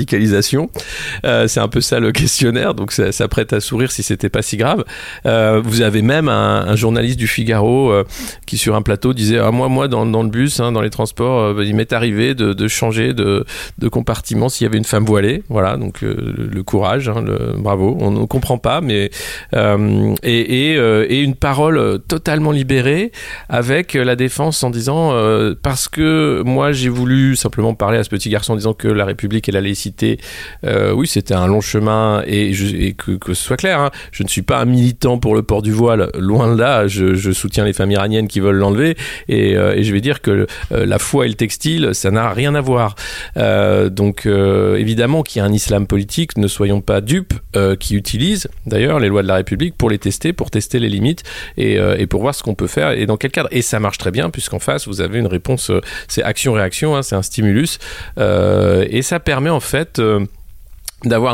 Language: French